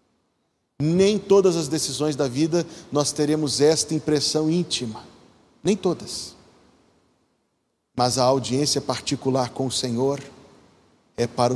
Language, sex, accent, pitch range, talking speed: Portuguese, male, Brazilian, 125-150 Hz, 115 wpm